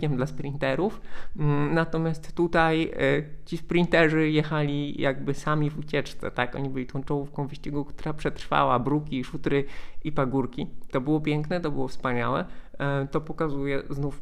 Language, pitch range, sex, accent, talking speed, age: Polish, 125-155 Hz, male, native, 145 wpm, 20-39